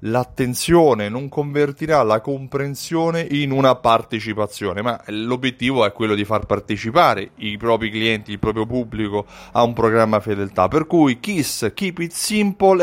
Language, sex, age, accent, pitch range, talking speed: Italian, male, 30-49, native, 120-170 Hz, 145 wpm